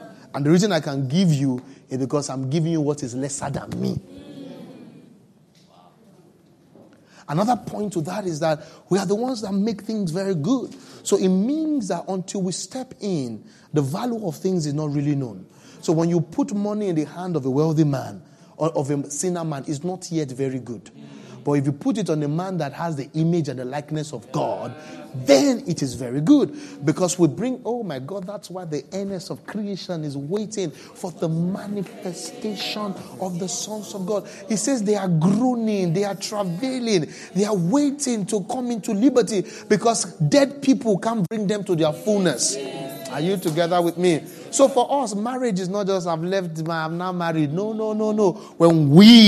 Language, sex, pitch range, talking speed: English, male, 155-210 Hz, 195 wpm